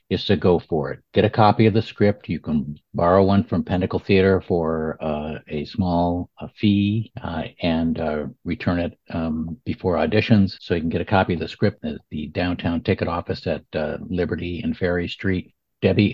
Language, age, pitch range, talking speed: English, 50-69, 80-100 Hz, 195 wpm